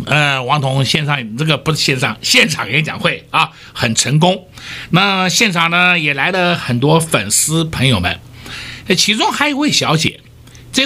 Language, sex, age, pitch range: Chinese, male, 60-79, 125-185 Hz